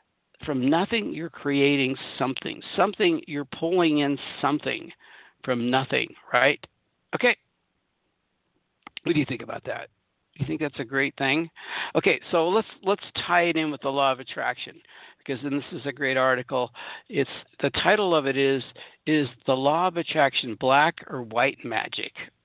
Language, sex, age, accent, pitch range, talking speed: English, male, 60-79, American, 135-160 Hz, 160 wpm